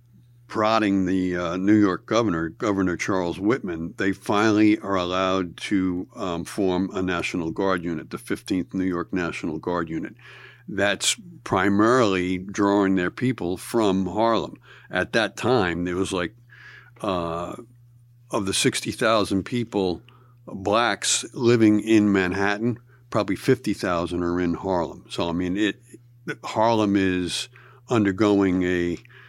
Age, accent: 60-79, American